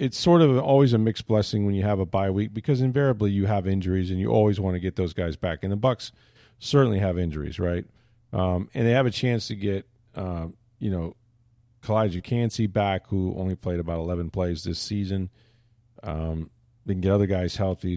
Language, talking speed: English, 210 wpm